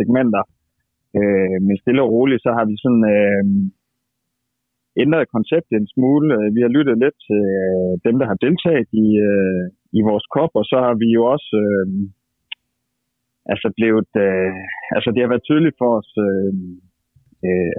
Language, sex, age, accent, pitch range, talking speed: Danish, male, 30-49, native, 95-120 Hz, 165 wpm